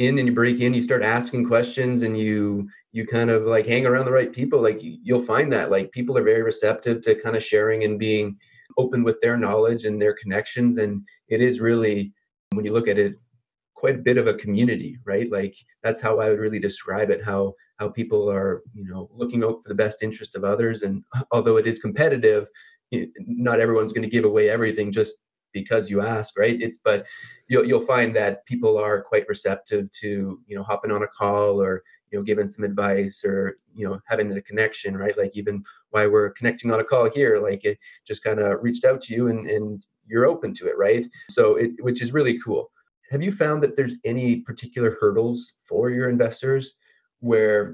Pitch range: 105-125 Hz